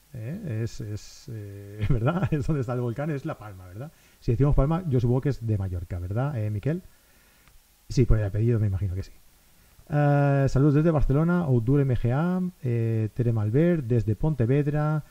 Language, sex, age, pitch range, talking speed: Spanish, male, 30-49, 110-145 Hz, 180 wpm